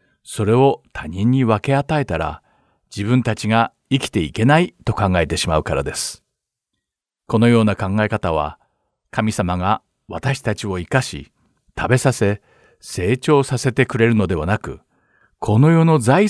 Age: 50-69